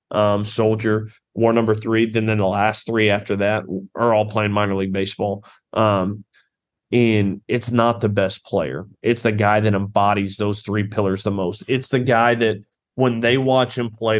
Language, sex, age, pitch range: English, male, 30-49, 100-115 Hz